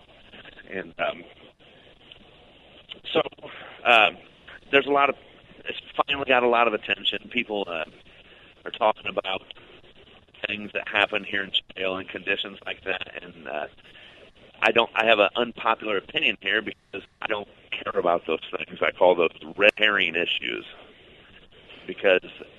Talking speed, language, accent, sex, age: 145 wpm, English, American, male, 40-59